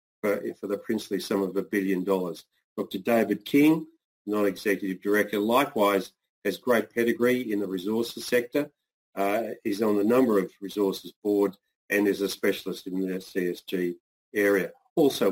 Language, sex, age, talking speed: English, male, 40-59, 150 wpm